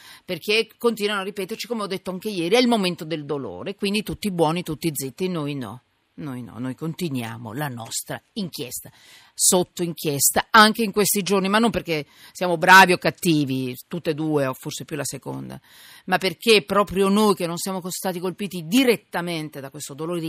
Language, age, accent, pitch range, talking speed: Italian, 50-69, native, 140-195 Hz, 185 wpm